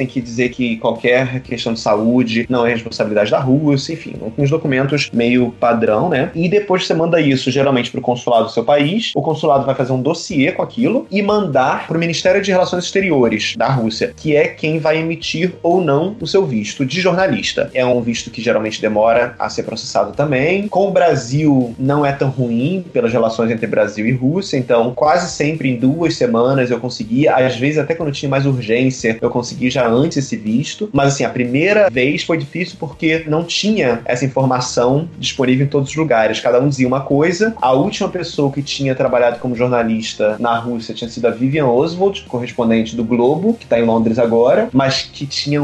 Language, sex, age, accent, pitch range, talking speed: Portuguese, male, 20-39, Brazilian, 125-165 Hz, 200 wpm